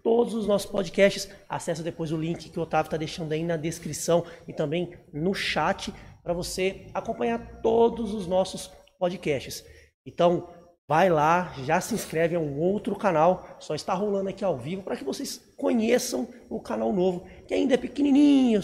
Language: Portuguese